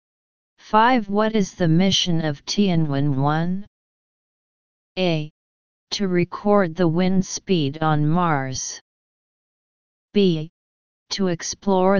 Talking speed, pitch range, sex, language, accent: 90 wpm, 150-195 Hz, female, English, American